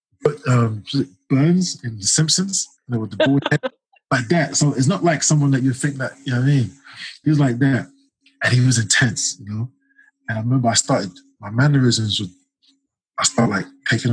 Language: English